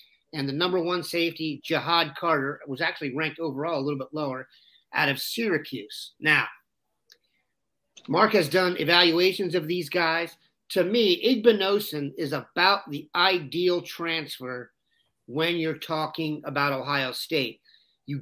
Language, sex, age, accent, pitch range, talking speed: English, male, 40-59, American, 150-185 Hz, 135 wpm